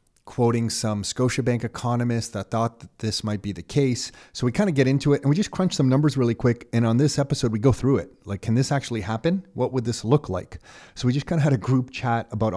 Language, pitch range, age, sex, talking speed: English, 110-135 Hz, 30-49, male, 265 wpm